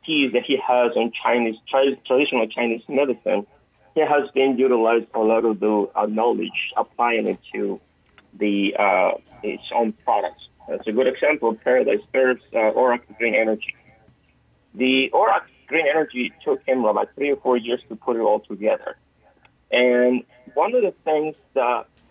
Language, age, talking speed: English, 30-49, 155 wpm